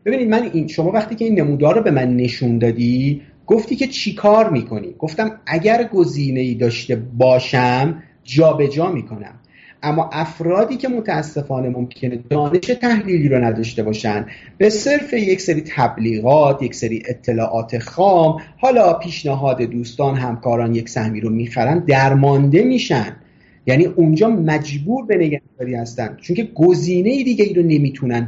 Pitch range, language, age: 120-180 Hz, Persian, 40-59